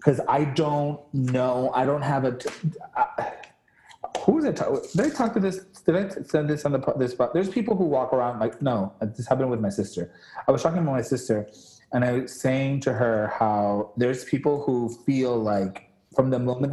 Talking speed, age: 215 wpm, 30-49